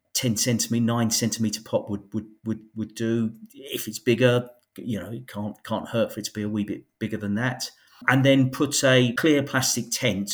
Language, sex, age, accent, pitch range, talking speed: English, male, 40-59, British, 105-135 Hz, 210 wpm